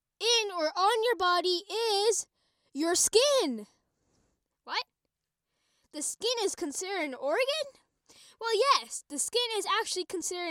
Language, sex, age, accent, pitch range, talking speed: English, female, 10-29, American, 285-430 Hz, 125 wpm